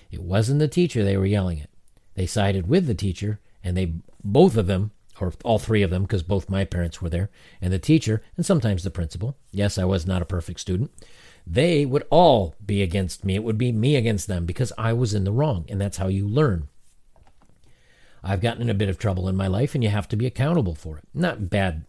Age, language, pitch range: 50-69, English, 95-120 Hz